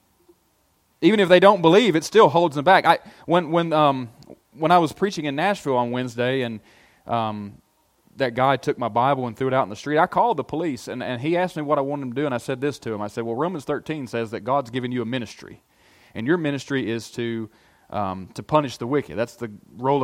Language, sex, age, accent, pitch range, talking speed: English, male, 30-49, American, 115-150 Hz, 245 wpm